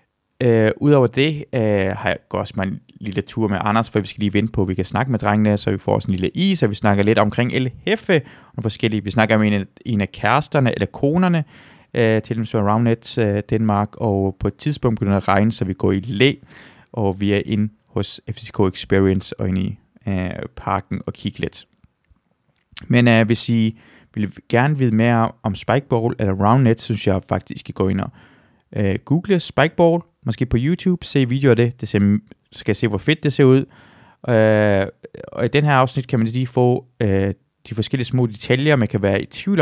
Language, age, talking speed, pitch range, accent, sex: Danish, 20-39, 215 wpm, 105-130 Hz, native, male